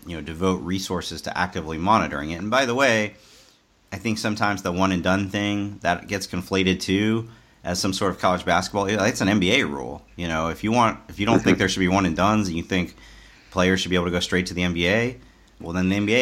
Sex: male